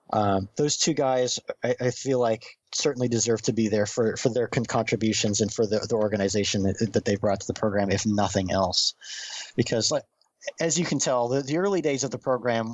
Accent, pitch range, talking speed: American, 105-125 Hz, 215 wpm